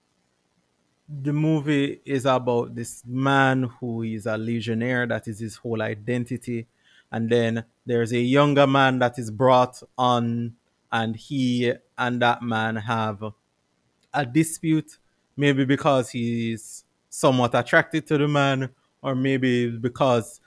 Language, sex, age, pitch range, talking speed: English, male, 20-39, 105-135 Hz, 130 wpm